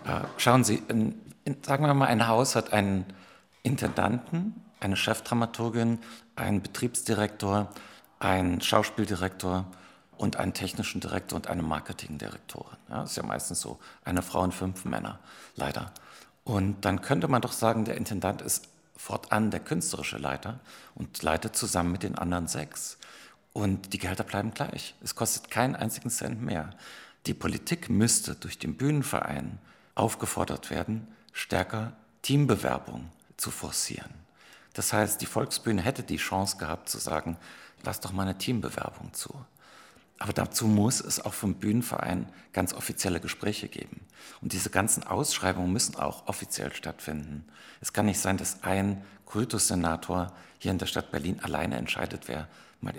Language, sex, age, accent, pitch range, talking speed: German, male, 50-69, German, 90-115 Hz, 145 wpm